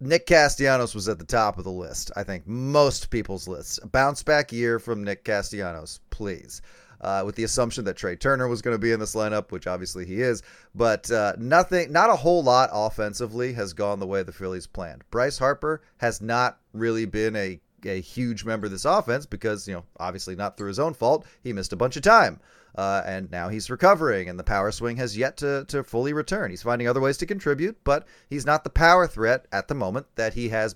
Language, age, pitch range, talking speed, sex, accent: English, 30-49, 100-145 Hz, 225 wpm, male, American